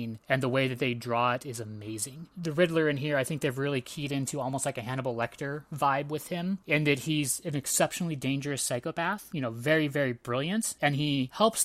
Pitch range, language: 125-155 Hz, English